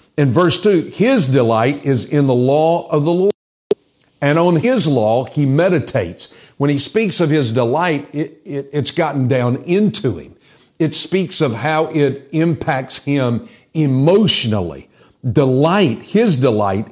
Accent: American